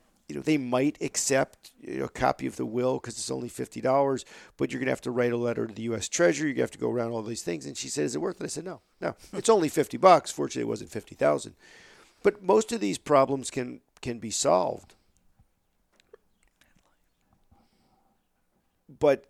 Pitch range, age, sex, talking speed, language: 115-140 Hz, 50-69, male, 210 wpm, English